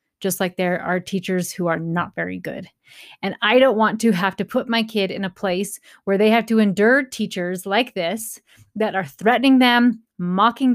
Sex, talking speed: female, 200 wpm